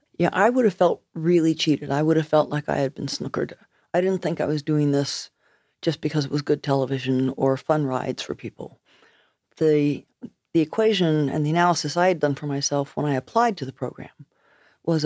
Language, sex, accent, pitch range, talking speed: English, female, American, 140-160 Hz, 205 wpm